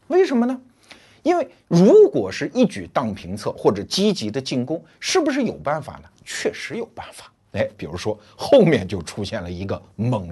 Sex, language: male, Chinese